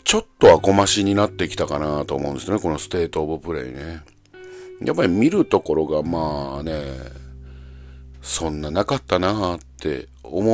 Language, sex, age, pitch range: Japanese, male, 50-69, 75-105 Hz